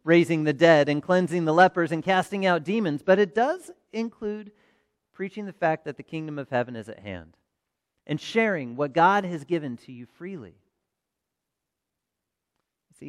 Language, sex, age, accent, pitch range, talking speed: English, male, 40-59, American, 140-195 Hz, 165 wpm